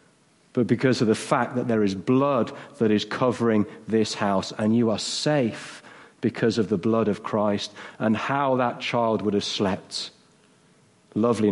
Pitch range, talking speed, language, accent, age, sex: 110-130 Hz, 165 wpm, English, British, 40-59, male